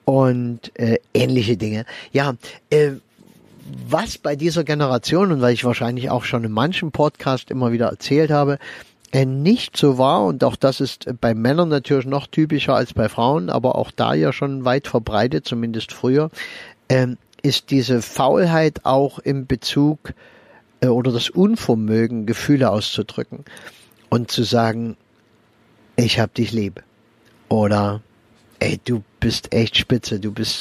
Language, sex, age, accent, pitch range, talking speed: German, male, 50-69, German, 115-135 Hz, 145 wpm